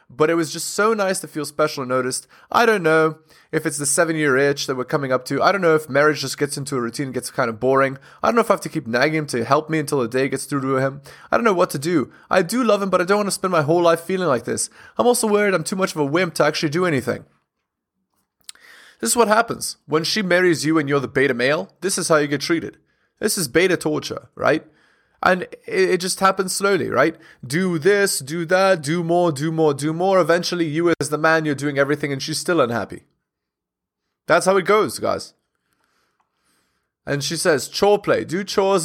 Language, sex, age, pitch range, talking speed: English, male, 20-39, 145-185 Hz, 245 wpm